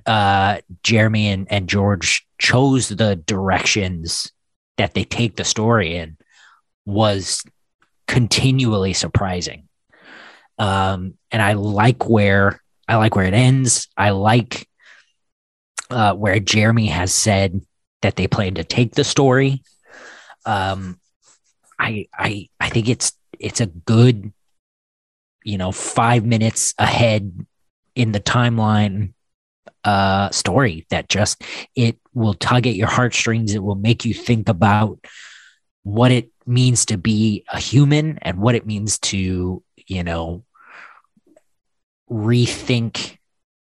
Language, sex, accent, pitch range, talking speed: English, male, American, 100-120 Hz, 120 wpm